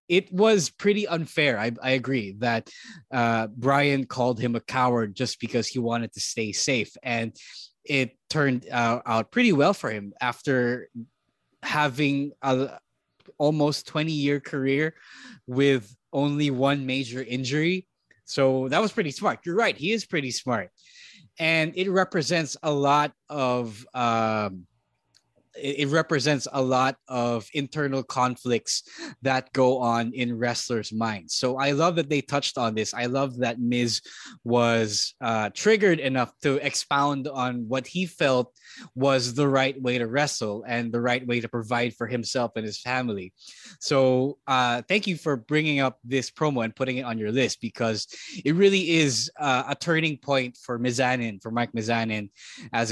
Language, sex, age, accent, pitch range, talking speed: English, male, 20-39, Filipino, 120-145 Hz, 160 wpm